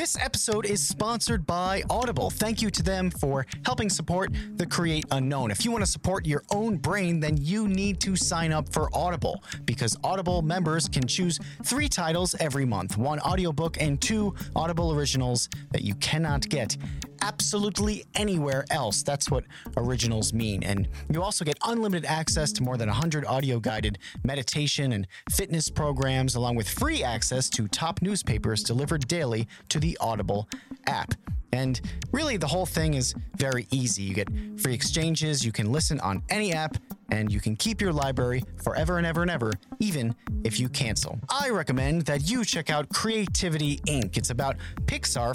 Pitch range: 125-180 Hz